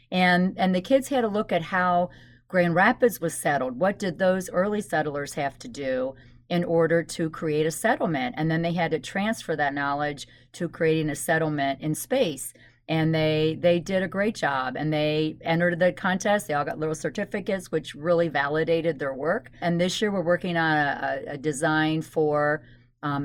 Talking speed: 190 wpm